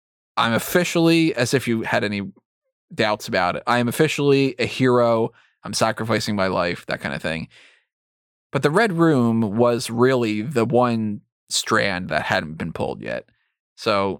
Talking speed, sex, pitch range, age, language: 160 wpm, male, 110-180 Hz, 20-39, English